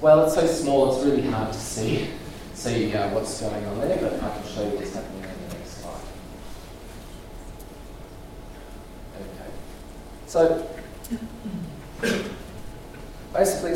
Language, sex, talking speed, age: English, male, 125 wpm, 30-49